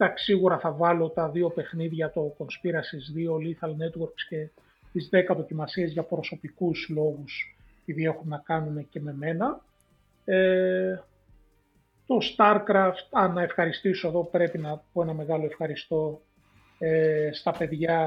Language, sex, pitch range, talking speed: Greek, male, 155-185 Hz, 135 wpm